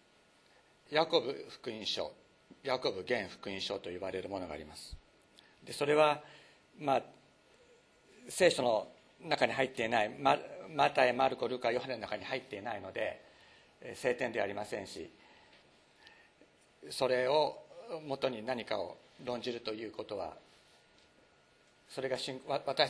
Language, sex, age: Japanese, male, 60-79